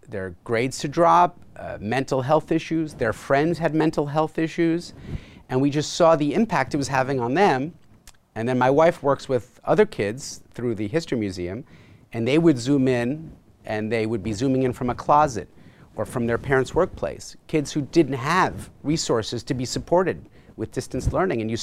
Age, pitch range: 40-59, 125-185 Hz